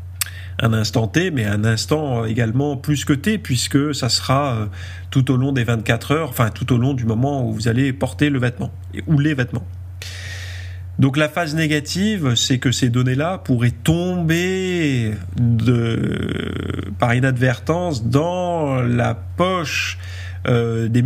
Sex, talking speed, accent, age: male, 145 wpm, French, 30-49